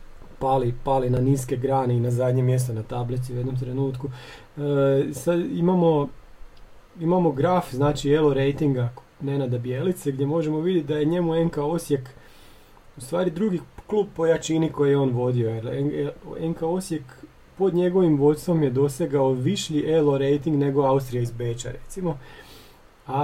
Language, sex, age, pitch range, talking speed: Croatian, male, 30-49, 130-165 Hz, 150 wpm